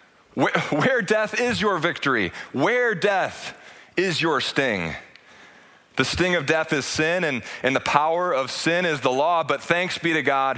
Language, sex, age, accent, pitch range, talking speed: English, male, 30-49, American, 125-155 Hz, 175 wpm